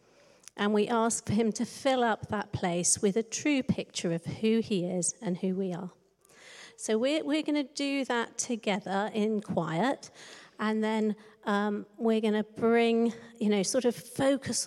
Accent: British